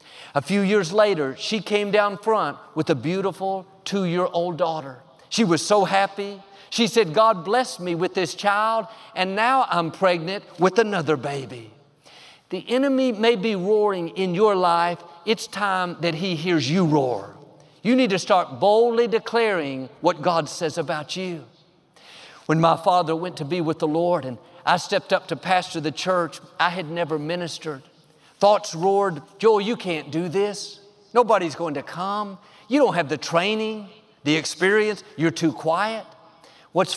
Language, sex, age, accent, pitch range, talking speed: English, male, 50-69, American, 165-215 Hz, 165 wpm